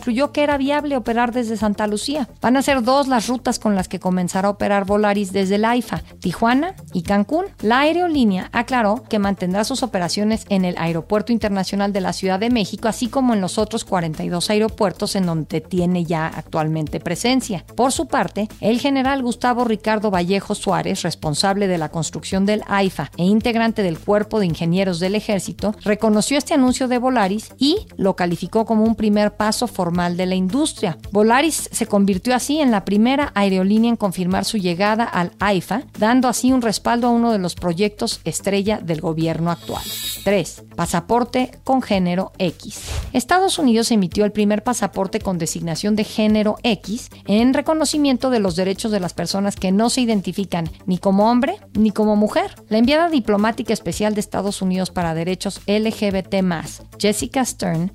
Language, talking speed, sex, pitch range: Spanish, 175 wpm, female, 185-240 Hz